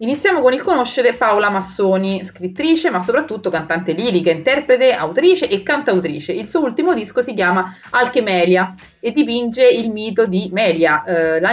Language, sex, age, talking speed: Italian, female, 30-49, 155 wpm